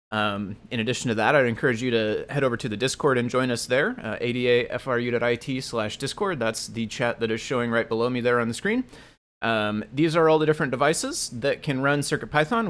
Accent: American